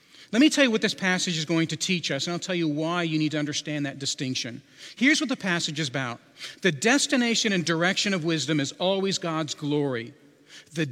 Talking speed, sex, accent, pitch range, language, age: 220 wpm, male, American, 150-200 Hz, English, 40-59